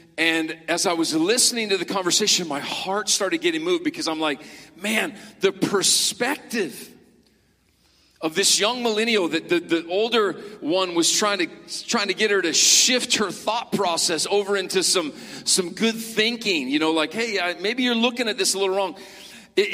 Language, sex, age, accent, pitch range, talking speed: English, male, 40-59, American, 185-235 Hz, 180 wpm